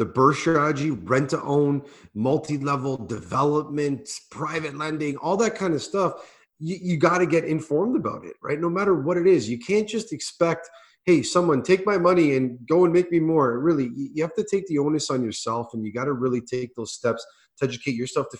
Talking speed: 210 wpm